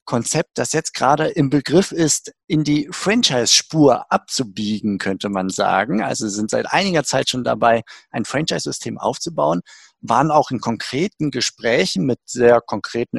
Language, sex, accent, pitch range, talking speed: German, male, German, 115-145 Hz, 145 wpm